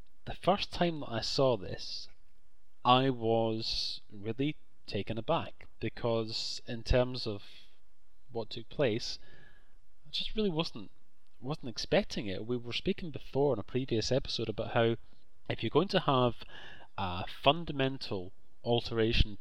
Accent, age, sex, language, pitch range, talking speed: British, 30-49, male, English, 105-125 Hz, 135 wpm